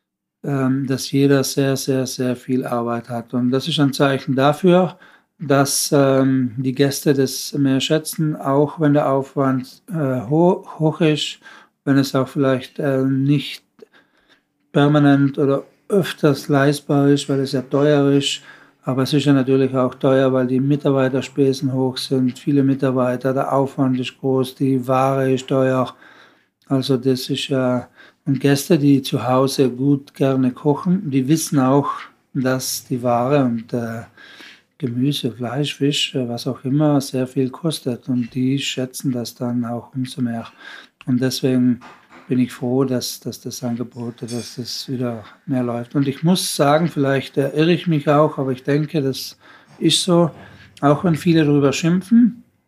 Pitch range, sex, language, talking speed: 130-145 Hz, male, German, 155 wpm